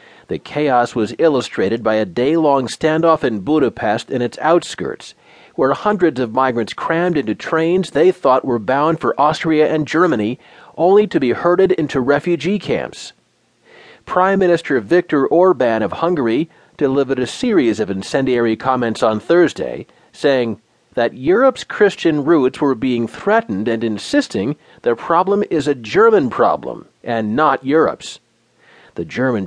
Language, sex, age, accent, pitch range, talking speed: English, male, 40-59, American, 130-180 Hz, 145 wpm